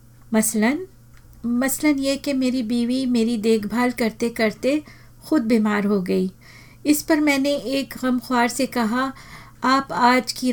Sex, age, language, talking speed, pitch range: female, 50-69, Hindi, 135 wpm, 195-255 Hz